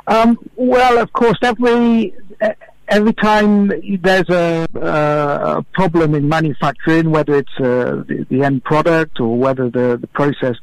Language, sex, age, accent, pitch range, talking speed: English, male, 60-79, British, 125-165 Hz, 140 wpm